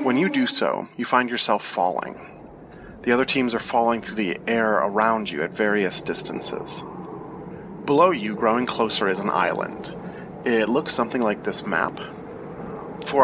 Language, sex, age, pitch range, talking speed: English, male, 30-49, 105-120 Hz, 160 wpm